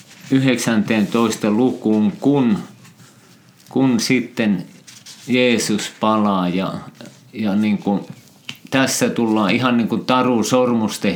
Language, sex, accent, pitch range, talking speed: Finnish, male, native, 105-120 Hz, 95 wpm